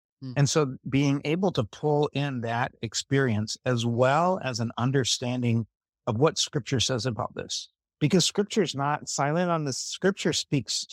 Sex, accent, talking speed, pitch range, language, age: male, American, 160 wpm, 120-160 Hz, English, 50-69